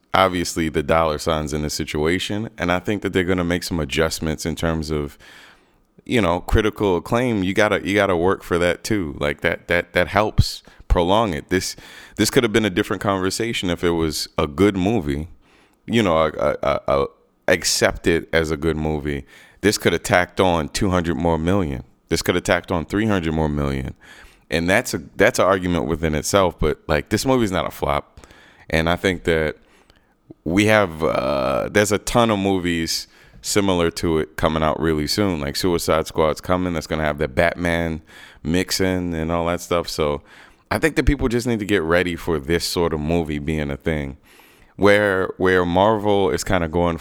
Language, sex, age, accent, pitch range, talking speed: English, male, 30-49, American, 80-100 Hz, 195 wpm